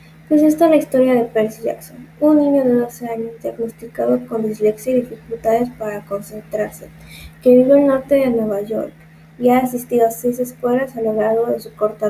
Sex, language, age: female, Spanish, 20-39